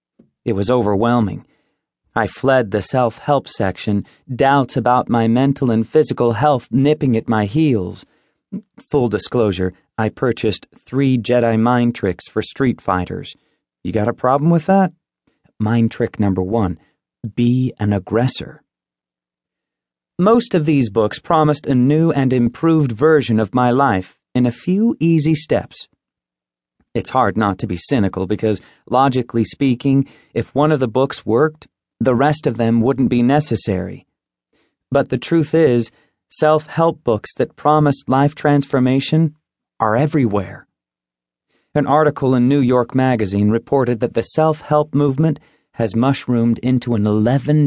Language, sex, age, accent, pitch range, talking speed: English, male, 30-49, American, 110-140 Hz, 140 wpm